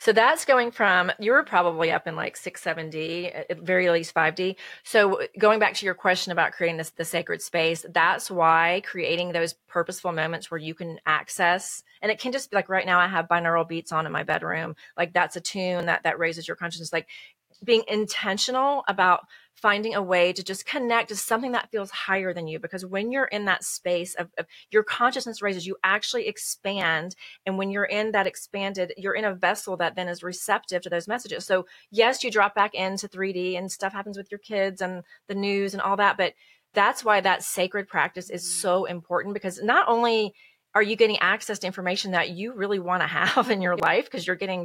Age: 30-49